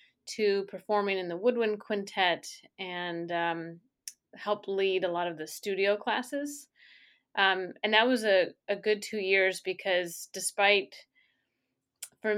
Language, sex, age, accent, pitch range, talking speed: English, female, 30-49, American, 180-215 Hz, 135 wpm